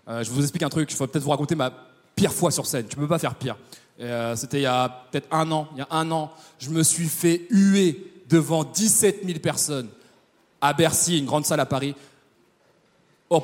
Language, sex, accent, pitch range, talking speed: French, male, French, 150-190 Hz, 230 wpm